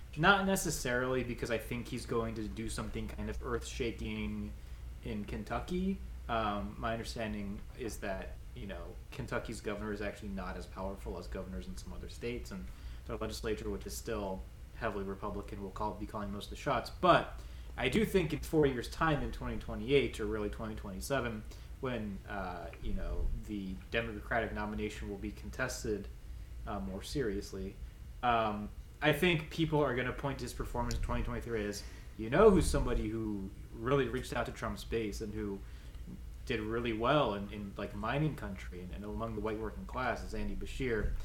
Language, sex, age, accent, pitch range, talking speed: English, male, 20-39, American, 95-120 Hz, 175 wpm